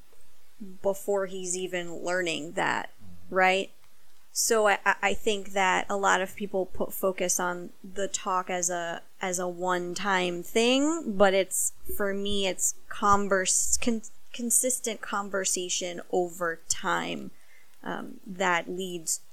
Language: English